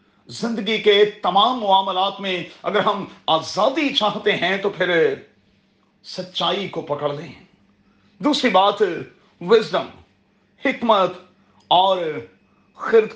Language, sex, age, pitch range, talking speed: Urdu, male, 40-59, 185-265 Hz, 100 wpm